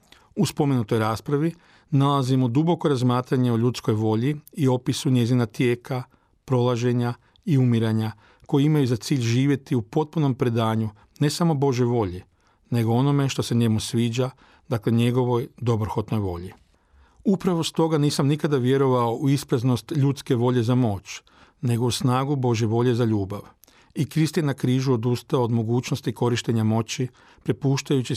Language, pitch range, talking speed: Croatian, 120-140 Hz, 140 wpm